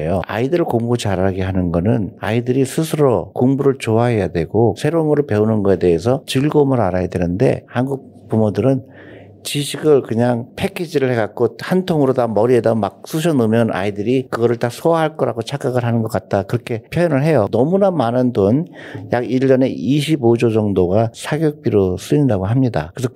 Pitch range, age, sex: 100-130 Hz, 50-69, male